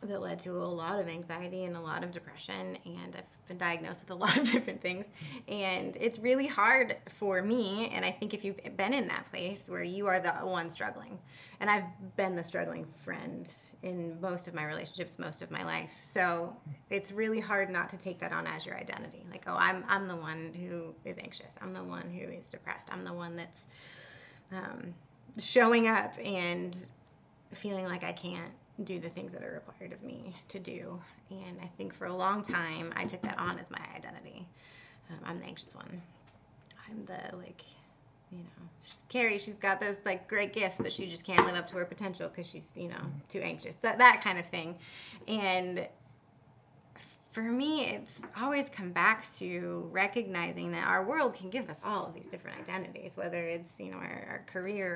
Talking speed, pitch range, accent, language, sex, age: 205 wpm, 165-200 Hz, American, English, female, 20-39